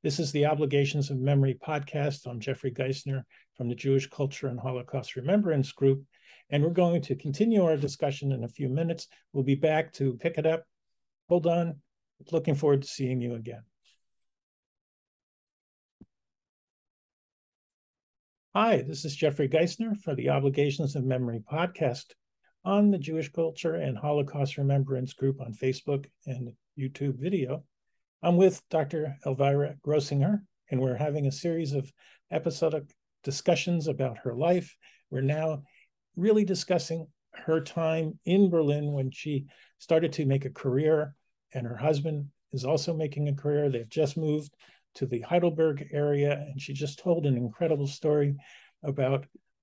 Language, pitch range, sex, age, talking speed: English, 135-160 Hz, male, 50-69, 150 wpm